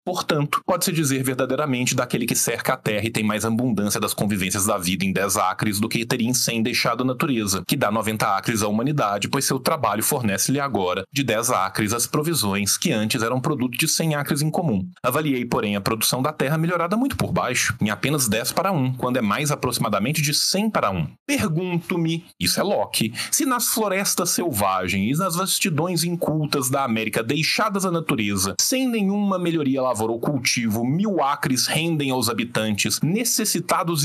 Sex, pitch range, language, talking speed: male, 115-170 Hz, Portuguese, 190 wpm